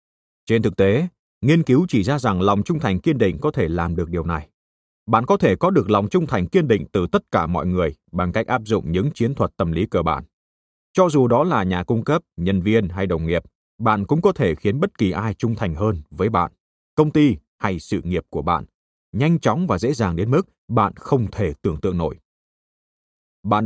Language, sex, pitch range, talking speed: Vietnamese, male, 85-125 Hz, 230 wpm